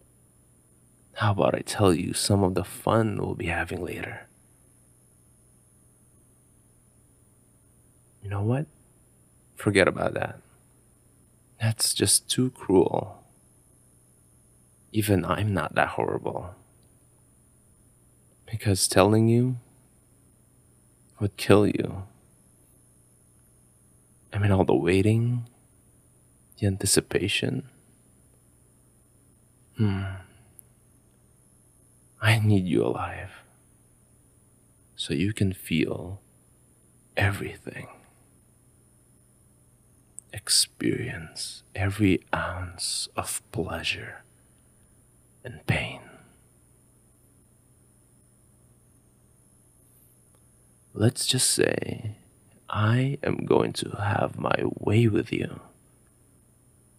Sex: male